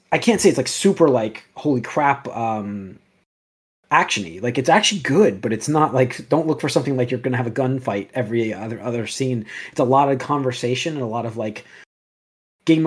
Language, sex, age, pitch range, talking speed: English, male, 20-39, 115-150 Hz, 205 wpm